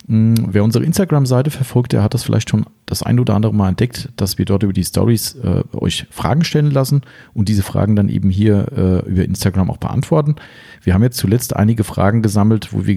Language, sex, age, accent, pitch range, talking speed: German, male, 40-59, German, 95-120 Hz, 215 wpm